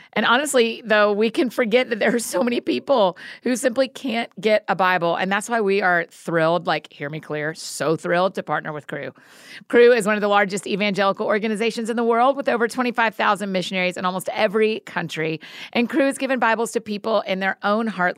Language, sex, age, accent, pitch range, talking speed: English, female, 40-59, American, 185-235 Hz, 210 wpm